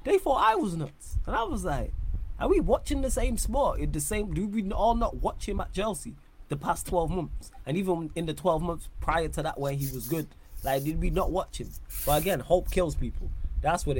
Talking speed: 240 wpm